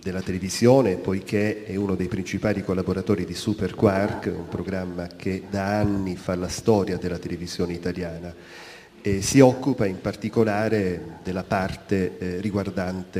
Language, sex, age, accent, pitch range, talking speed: Italian, male, 40-59, native, 90-110 Hz, 135 wpm